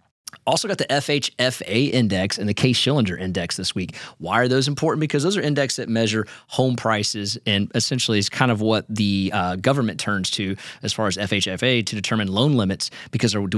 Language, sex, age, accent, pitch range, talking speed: English, male, 30-49, American, 100-125 Hz, 200 wpm